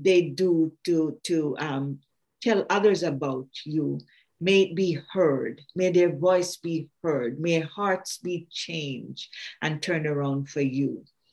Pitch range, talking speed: 155-185 Hz, 145 wpm